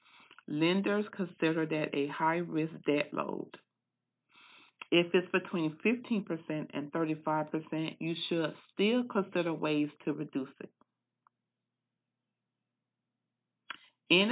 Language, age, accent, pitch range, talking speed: English, 50-69, American, 155-180 Hz, 90 wpm